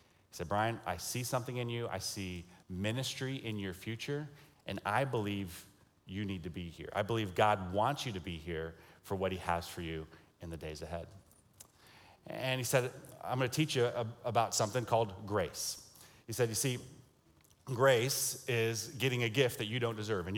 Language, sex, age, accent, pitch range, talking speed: English, male, 30-49, American, 95-115 Hz, 190 wpm